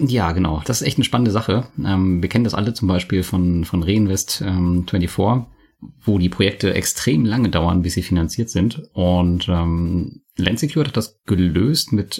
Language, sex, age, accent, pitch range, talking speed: German, male, 30-49, German, 90-110 Hz, 165 wpm